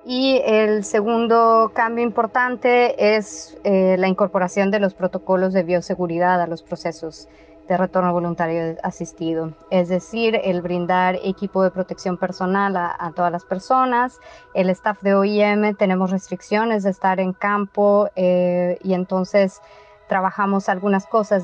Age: 30-49